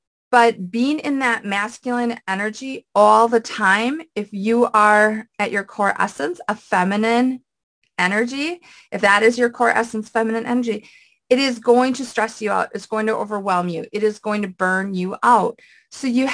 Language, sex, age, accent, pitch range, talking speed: English, female, 30-49, American, 210-255 Hz, 175 wpm